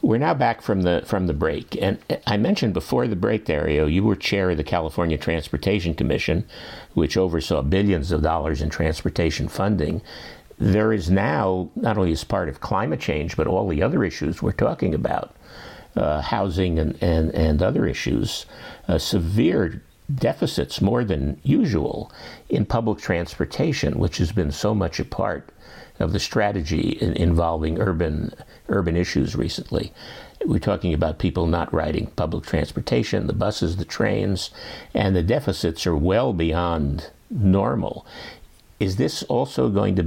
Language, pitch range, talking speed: English, 80-100 Hz, 155 wpm